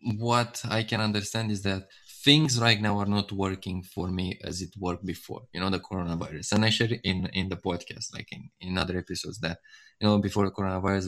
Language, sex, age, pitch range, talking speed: English, male, 20-39, 95-110 Hz, 215 wpm